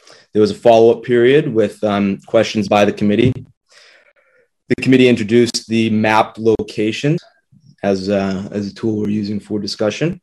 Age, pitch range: 20-39, 95-115 Hz